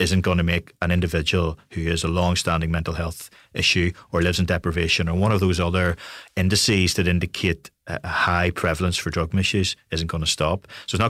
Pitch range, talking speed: 85-100 Hz, 205 wpm